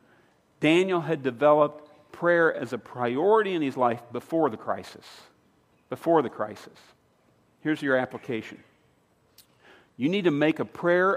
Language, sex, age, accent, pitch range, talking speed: English, male, 50-69, American, 140-175 Hz, 135 wpm